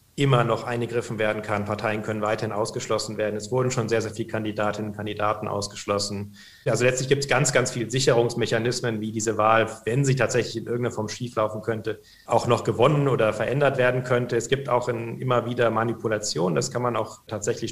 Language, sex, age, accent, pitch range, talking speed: German, male, 40-59, German, 110-130 Hz, 195 wpm